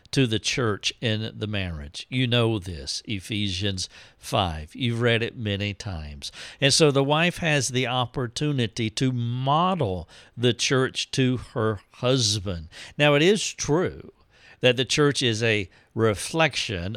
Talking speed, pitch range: 140 wpm, 105-135 Hz